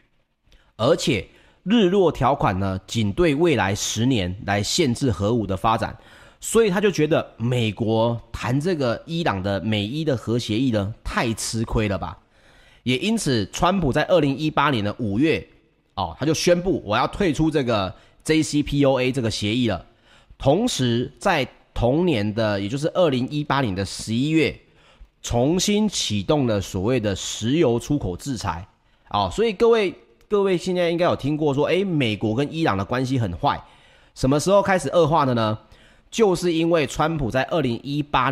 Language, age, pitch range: Chinese, 30-49, 110-155 Hz